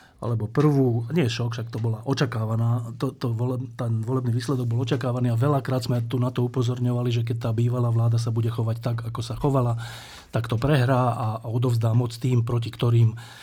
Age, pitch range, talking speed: 40-59, 115-135 Hz, 195 wpm